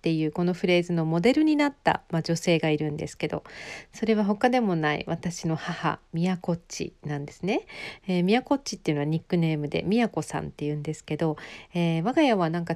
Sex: female